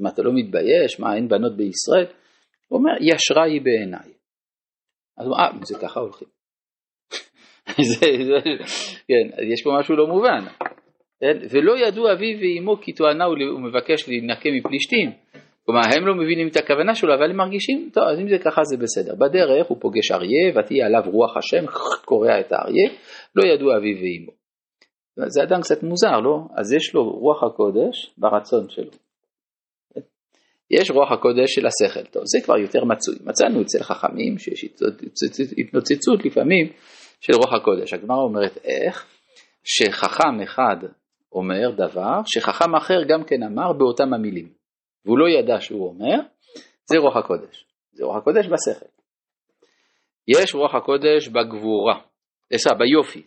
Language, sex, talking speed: Hebrew, male, 145 wpm